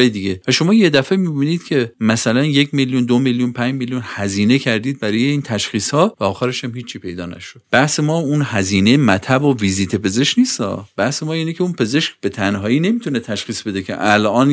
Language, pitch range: Persian, 100-145 Hz